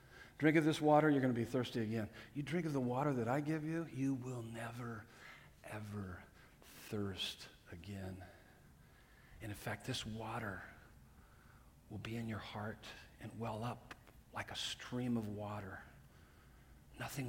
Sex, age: male, 50-69